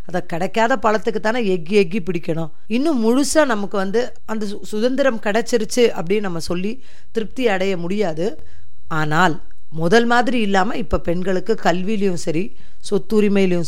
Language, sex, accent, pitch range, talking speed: Tamil, female, native, 170-225 Hz, 125 wpm